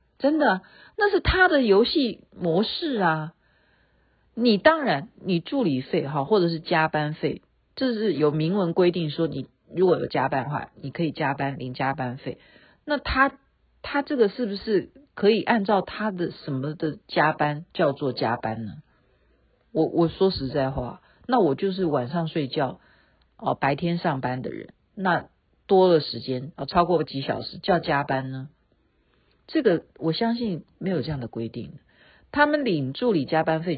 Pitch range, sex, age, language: 150-235 Hz, female, 50-69, Chinese